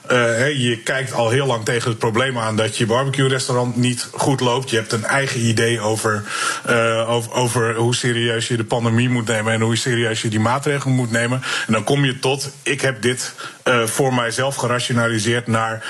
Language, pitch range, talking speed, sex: Dutch, 115-135 Hz, 195 wpm, male